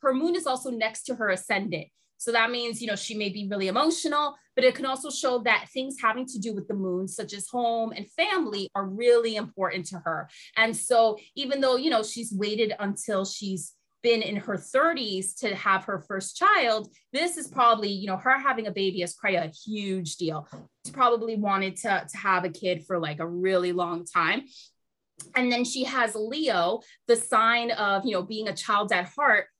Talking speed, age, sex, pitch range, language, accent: 210 wpm, 20-39, female, 195-255 Hz, English, American